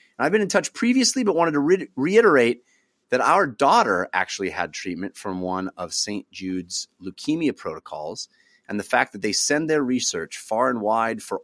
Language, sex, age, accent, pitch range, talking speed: English, male, 30-49, American, 95-145 Hz, 180 wpm